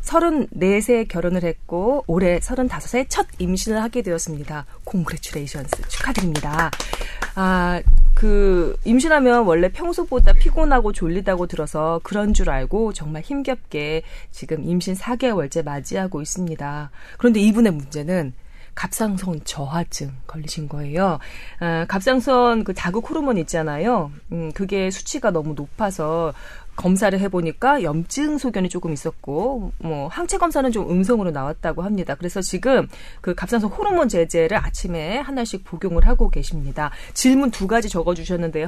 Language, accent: Korean, native